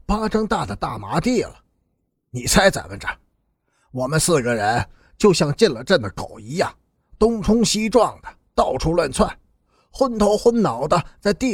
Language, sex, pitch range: Chinese, male, 160-230 Hz